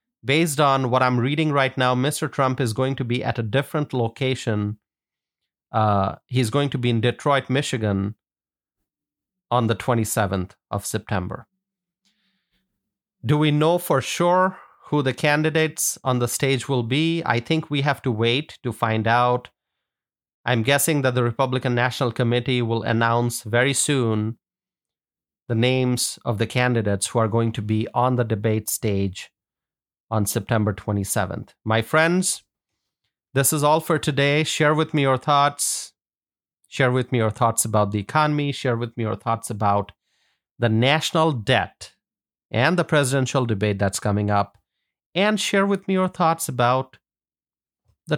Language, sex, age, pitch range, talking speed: English, male, 30-49, 115-150 Hz, 155 wpm